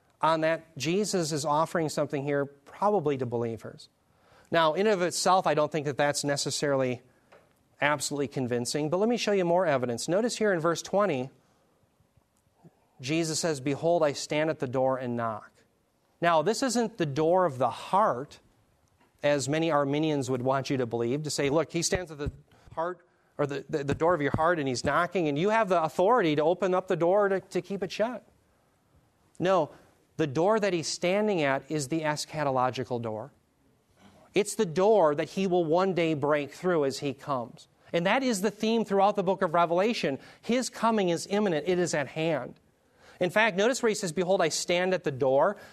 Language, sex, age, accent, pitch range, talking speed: English, male, 40-59, American, 145-195 Hz, 195 wpm